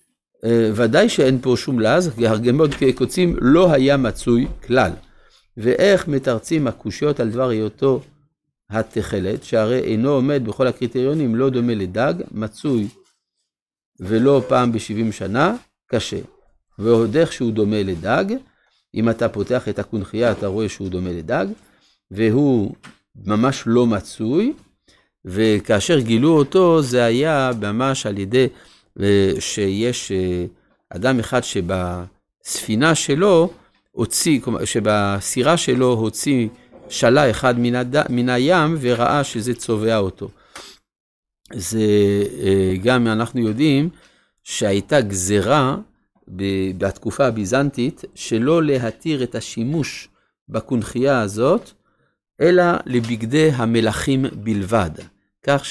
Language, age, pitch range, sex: Hebrew, 60-79, 105-135 Hz, male